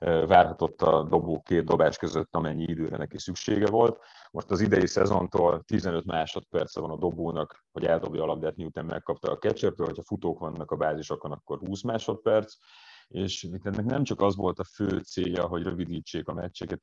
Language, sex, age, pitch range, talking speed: Hungarian, male, 30-49, 80-95 Hz, 175 wpm